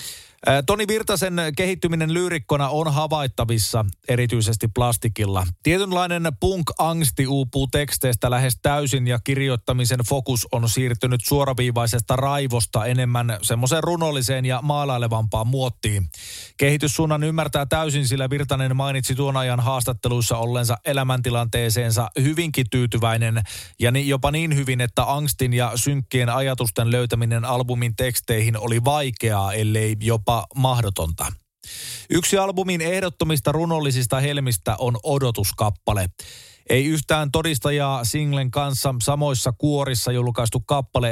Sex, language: male, Finnish